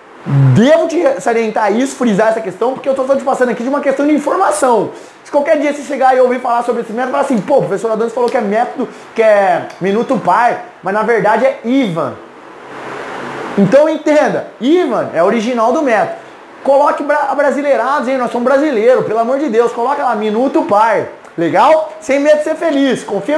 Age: 20-39